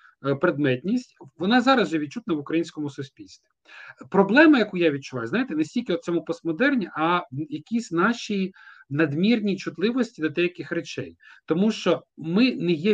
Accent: native